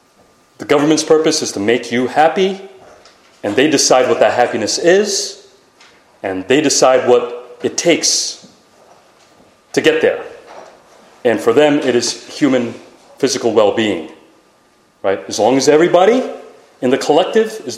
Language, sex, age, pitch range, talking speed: English, male, 30-49, 120-200 Hz, 140 wpm